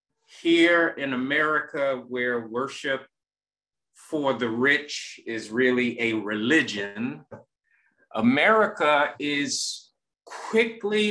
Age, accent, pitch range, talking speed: 50-69, American, 130-190 Hz, 80 wpm